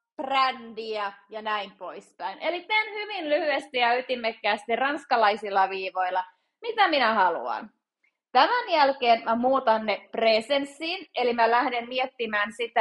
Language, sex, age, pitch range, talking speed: Finnish, female, 30-49, 235-295 Hz, 120 wpm